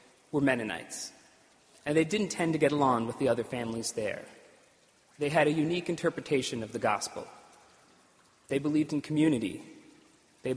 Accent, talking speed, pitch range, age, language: American, 155 wpm, 130-155 Hz, 30-49, English